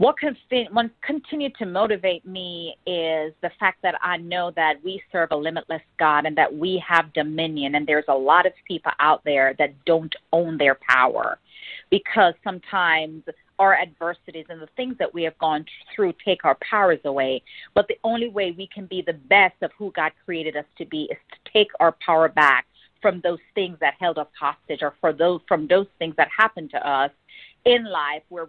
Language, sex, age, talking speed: English, female, 40-59, 195 wpm